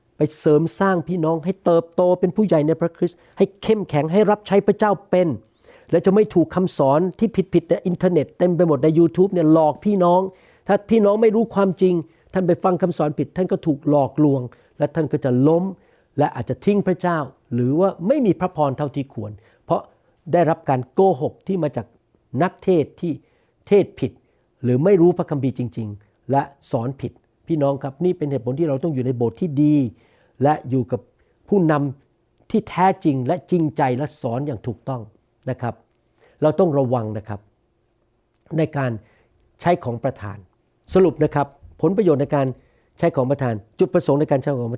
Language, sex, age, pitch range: Thai, male, 60-79, 130-175 Hz